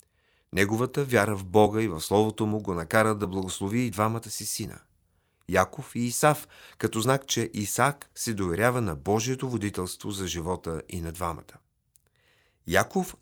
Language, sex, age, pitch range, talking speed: Bulgarian, male, 40-59, 95-120 Hz, 160 wpm